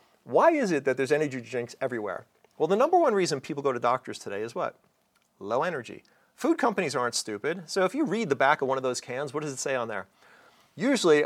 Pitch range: 125-165 Hz